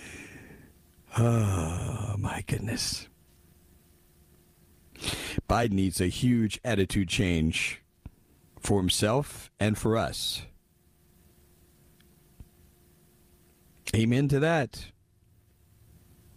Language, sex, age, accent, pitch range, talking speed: English, male, 50-69, American, 85-120 Hz, 60 wpm